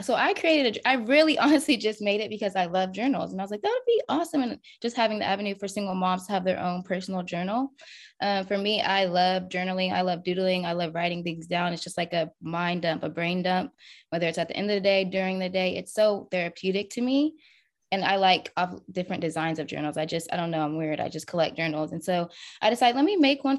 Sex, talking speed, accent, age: female, 255 wpm, American, 20-39